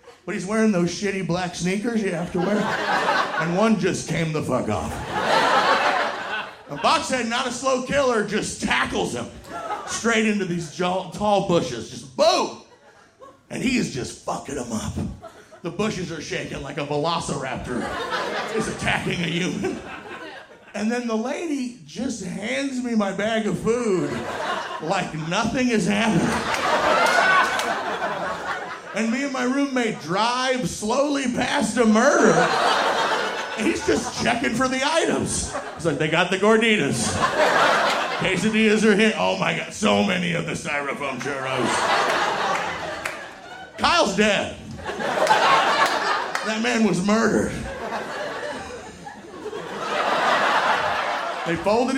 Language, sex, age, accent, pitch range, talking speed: English, male, 30-49, American, 180-240 Hz, 125 wpm